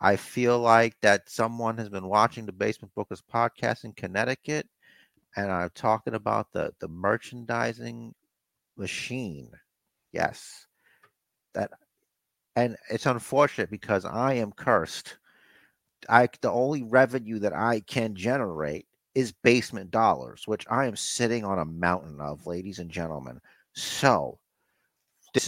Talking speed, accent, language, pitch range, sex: 130 wpm, American, English, 95-120 Hz, male